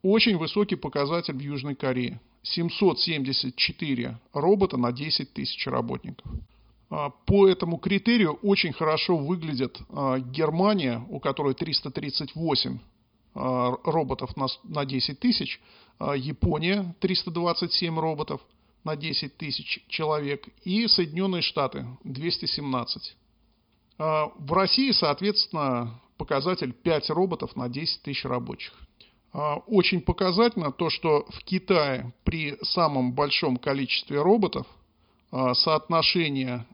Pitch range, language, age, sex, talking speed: 130-180 Hz, Russian, 50-69, male, 95 wpm